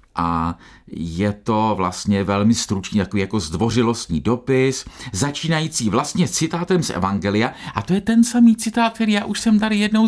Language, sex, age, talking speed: Czech, male, 50-69, 160 wpm